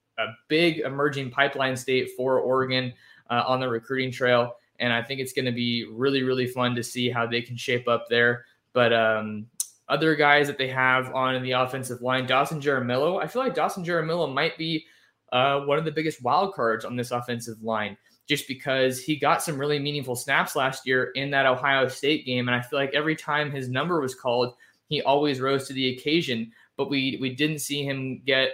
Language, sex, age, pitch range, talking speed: English, male, 20-39, 125-140 Hz, 210 wpm